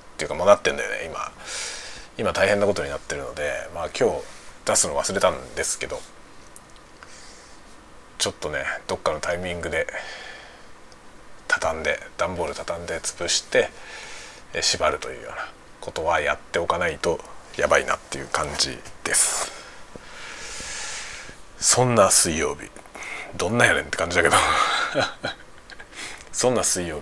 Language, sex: Japanese, male